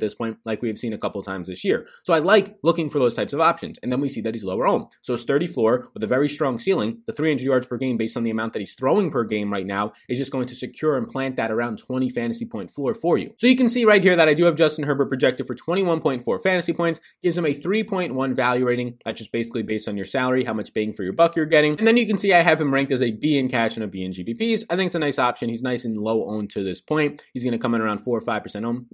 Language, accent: English, American